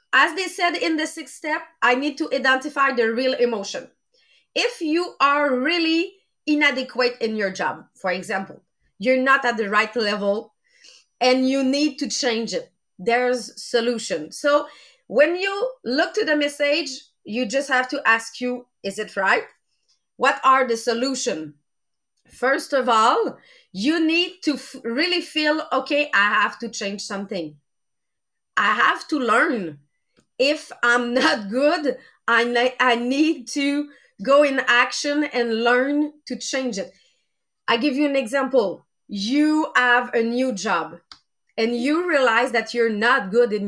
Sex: female